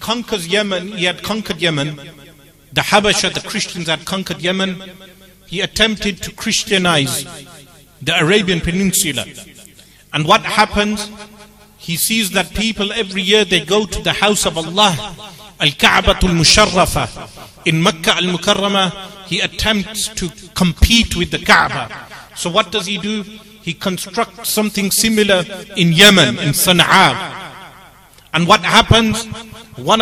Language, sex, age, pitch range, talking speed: English, male, 40-59, 170-210 Hz, 135 wpm